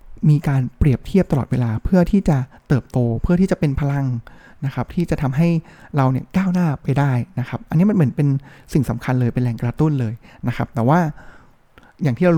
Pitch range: 130-170 Hz